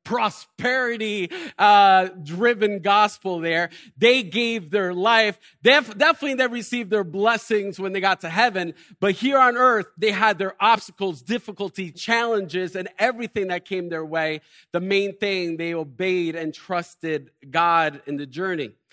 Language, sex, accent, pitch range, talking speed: English, male, American, 160-220 Hz, 145 wpm